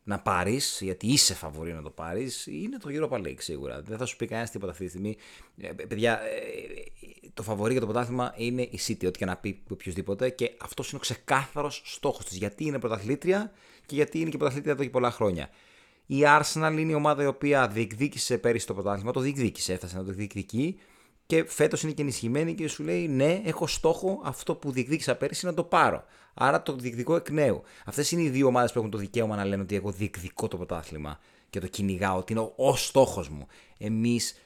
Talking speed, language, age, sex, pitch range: 210 wpm, Greek, 30-49, male, 105-150 Hz